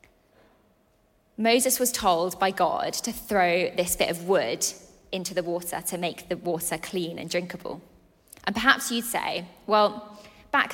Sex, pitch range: female, 180-225 Hz